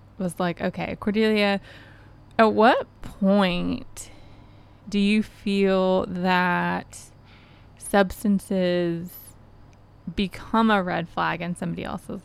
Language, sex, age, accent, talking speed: English, female, 20-39, American, 95 wpm